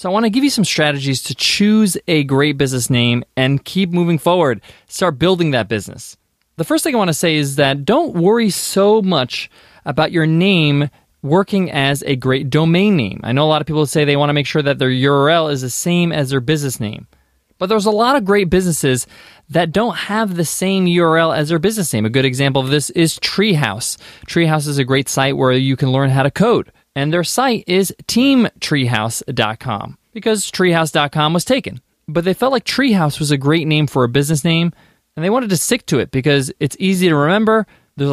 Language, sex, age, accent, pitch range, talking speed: English, male, 20-39, American, 140-185 Hz, 215 wpm